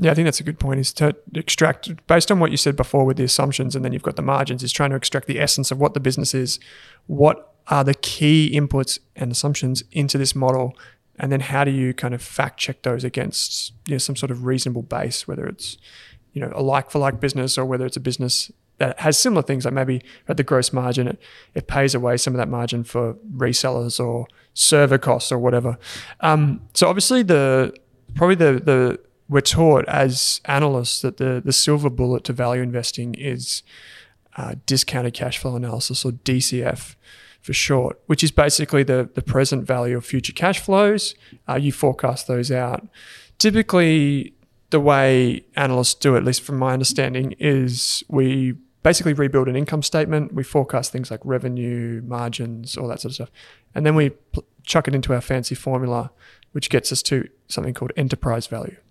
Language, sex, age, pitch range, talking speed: English, male, 20-39, 125-145 Hz, 195 wpm